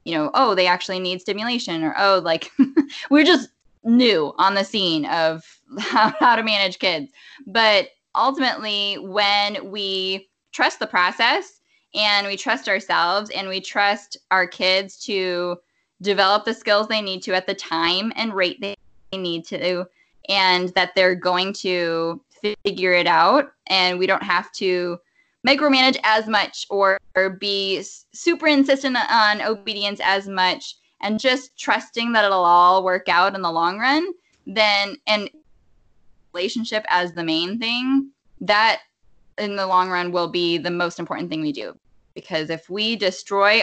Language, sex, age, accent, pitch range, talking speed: English, female, 10-29, American, 180-220 Hz, 155 wpm